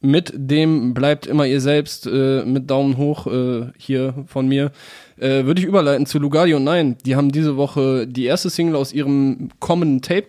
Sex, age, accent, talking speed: male, 20-39, German, 190 wpm